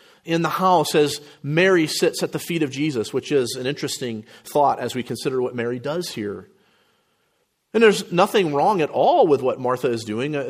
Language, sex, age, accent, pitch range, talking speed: English, male, 40-59, American, 130-180 Hz, 195 wpm